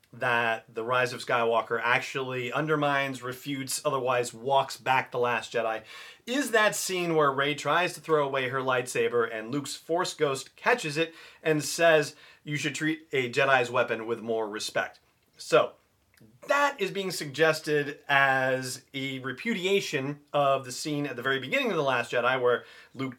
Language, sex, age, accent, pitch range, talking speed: English, male, 40-59, American, 130-175 Hz, 165 wpm